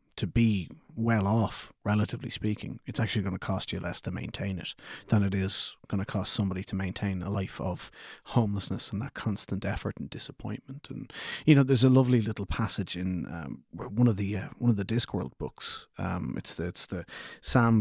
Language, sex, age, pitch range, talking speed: English, male, 30-49, 95-115 Hz, 200 wpm